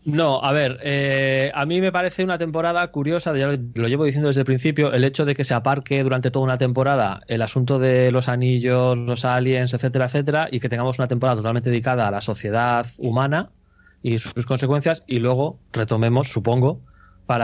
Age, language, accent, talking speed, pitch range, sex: 20-39, Spanish, Spanish, 200 wpm, 115-135 Hz, male